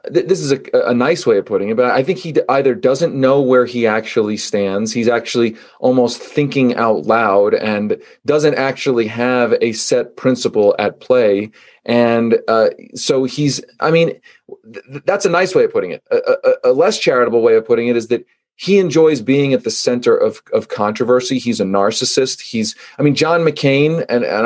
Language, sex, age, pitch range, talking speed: English, male, 30-49, 125-160 Hz, 190 wpm